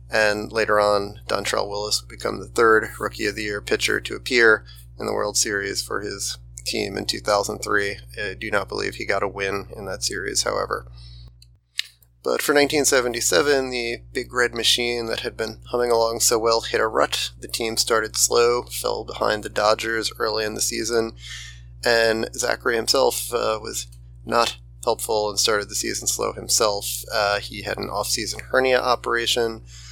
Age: 30-49